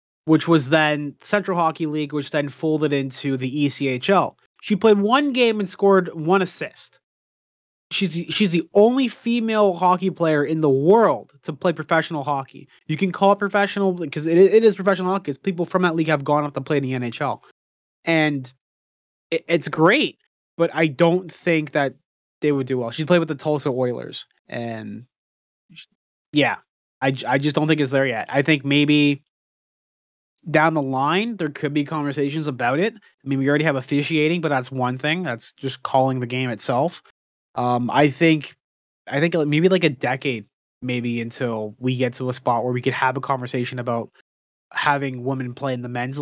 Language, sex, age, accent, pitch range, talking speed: English, male, 20-39, American, 125-160 Hz, 185 wpm